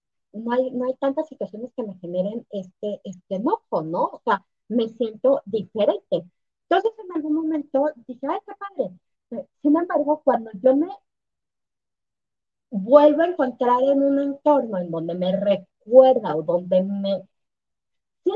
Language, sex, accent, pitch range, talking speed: Spanish, female, American, 230-300 Hz, 150 wpm